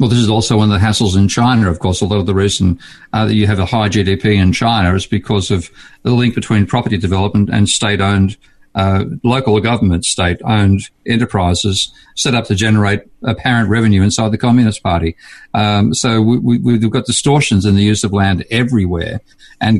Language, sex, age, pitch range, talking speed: English, male, 50-69, 95-110 Hz, 190 wpm